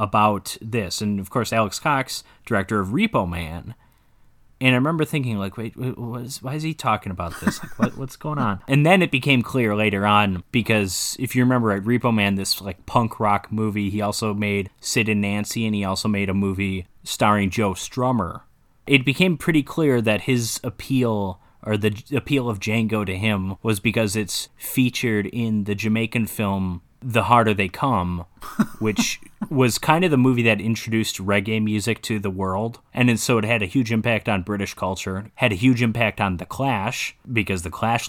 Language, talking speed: English, 195 wpm